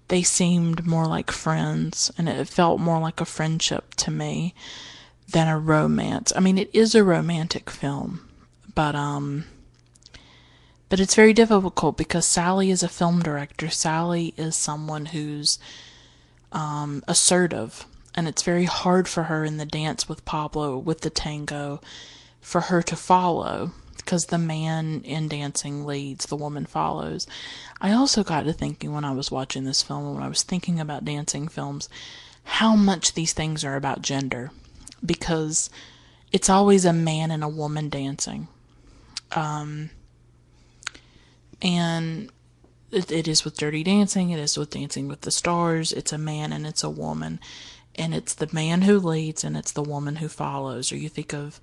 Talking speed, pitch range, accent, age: 165 wpm, 140-170 Hz, American, 20-39